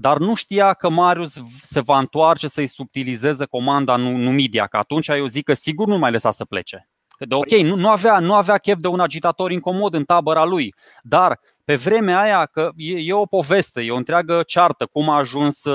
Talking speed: 205 wpm